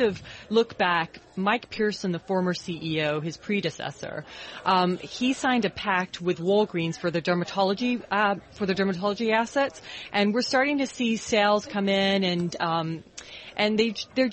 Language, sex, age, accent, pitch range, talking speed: English, female, 30-49, American, 175-215 Hz, 160 wpm